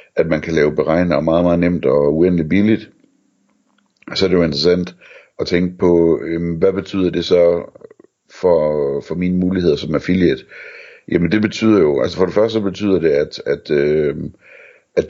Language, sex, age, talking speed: Danish, male, 60-79, 170 wpm